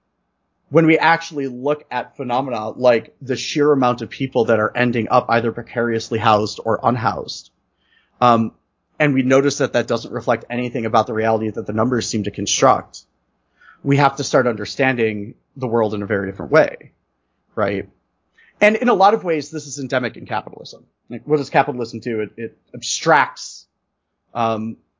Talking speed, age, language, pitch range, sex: 175 wpm, 30-49, English, 115-155 Hz, male